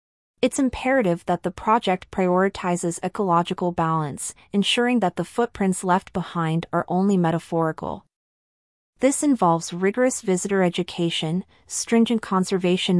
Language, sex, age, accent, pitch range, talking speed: English, female, 30-49, American, 170-200 Hz, 110 wpm